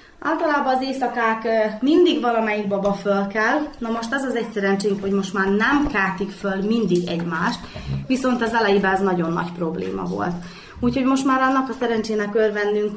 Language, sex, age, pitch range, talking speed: Hungarian, female, 20-39, 190-240 Hz, 170 wpm